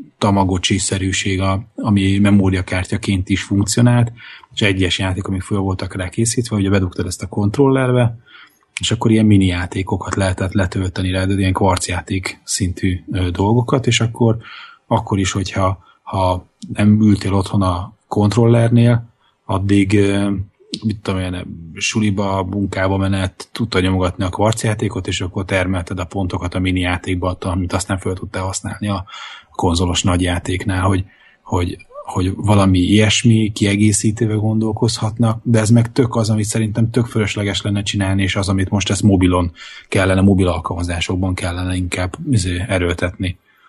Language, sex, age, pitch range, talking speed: Hungarian, male, 30-49, 95-110 Hz, 140 wpm